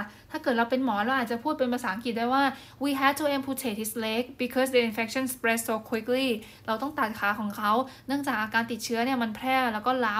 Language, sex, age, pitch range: Thai, female, 10-29, 220-260 Hz